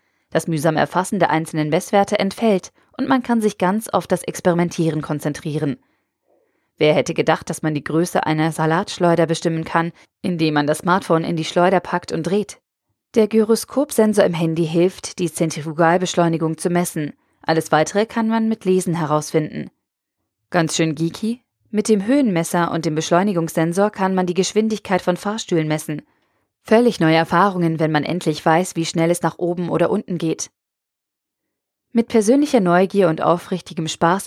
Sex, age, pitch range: female, 20-39, 165-205 Hz